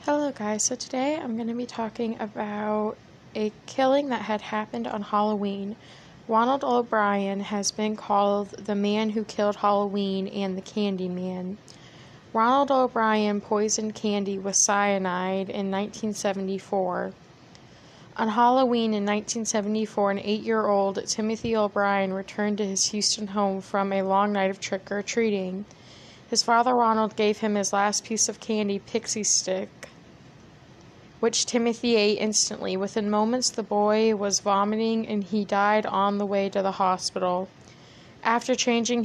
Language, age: English, 20-39